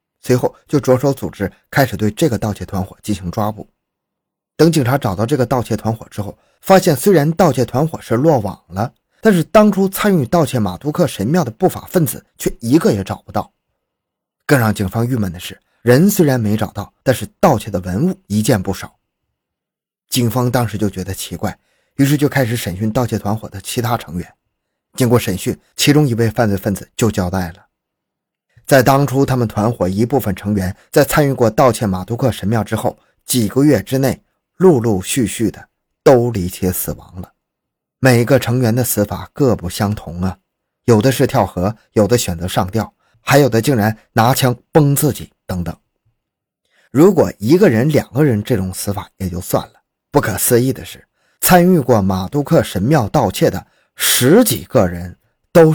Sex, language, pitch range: male, Chinese, 100-135 Hz